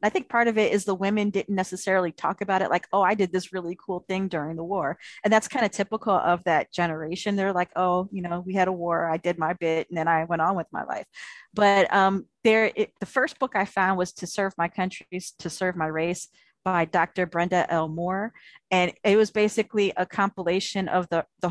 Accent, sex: American, female